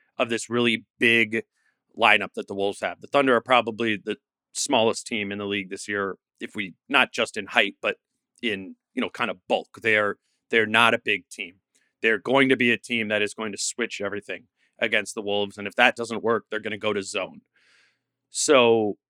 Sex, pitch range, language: male, 110-130 Hz, English